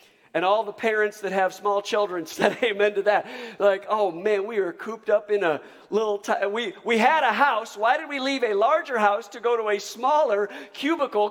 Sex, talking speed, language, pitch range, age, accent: male, 220 wpm, English, 175-230 Hz, 50-69, American